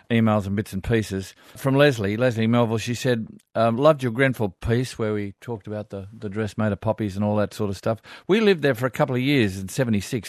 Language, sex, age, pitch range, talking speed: English, male, 50-69, 110-130 Hz, 240 wpm